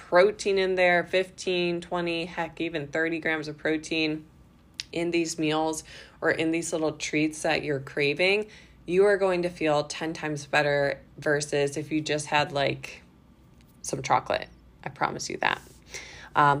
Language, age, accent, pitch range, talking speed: English, 20-39, American, 150-175 Hz, 155 wpm